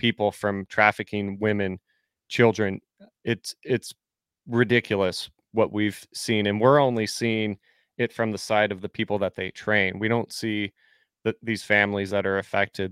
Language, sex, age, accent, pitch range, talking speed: English, male, 30-49, American, 100-115 Hz, 160 wpm